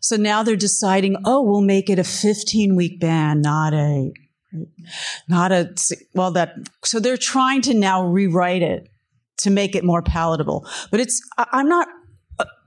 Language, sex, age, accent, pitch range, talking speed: English, female, 40-59, American, 165-220 Hz, 155 wpm